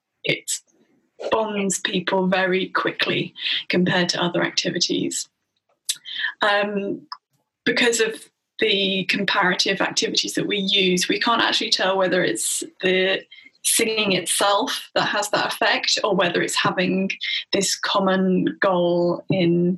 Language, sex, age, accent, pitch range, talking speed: English, female, 10-29, British, 185-215 Hz, 120 wpm